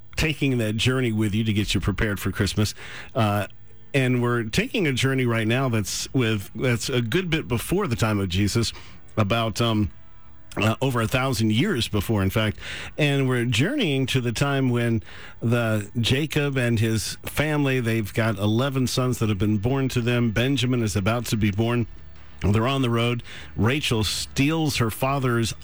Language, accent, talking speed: English, American, 180 wpm